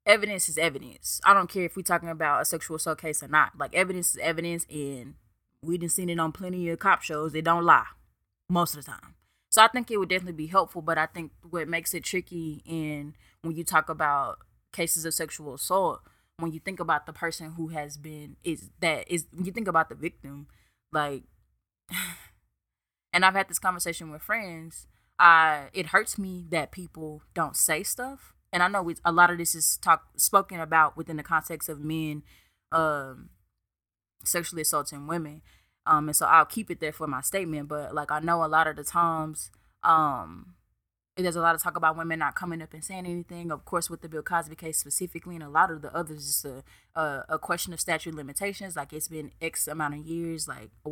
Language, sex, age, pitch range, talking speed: English, female, 20-39, 150-175 Hz, 215 wpm